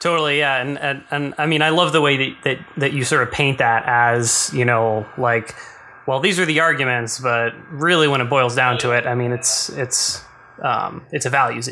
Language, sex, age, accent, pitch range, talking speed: English, male, 20-39, American, 120-135 Hz, 225 wpm